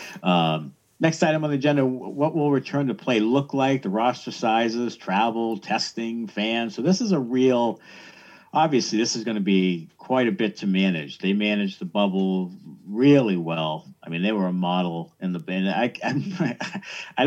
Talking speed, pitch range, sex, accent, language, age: 180 wpm, 90-120 Hz, male, American, English, 50-69